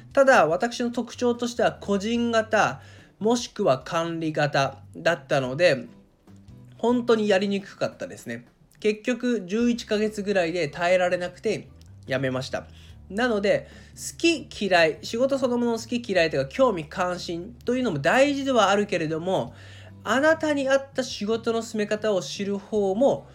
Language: Japanese